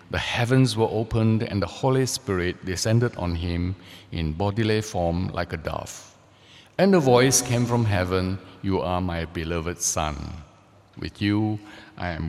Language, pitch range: English, 95-125 Hz